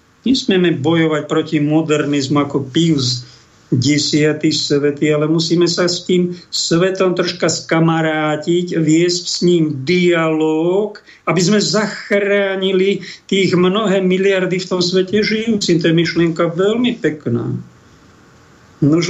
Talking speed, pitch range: 115 wpm, 150-185 Hz